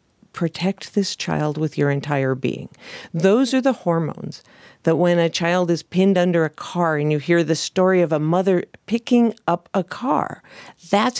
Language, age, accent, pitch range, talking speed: English, 50-69, American, 160-205 Hz, 175 wpm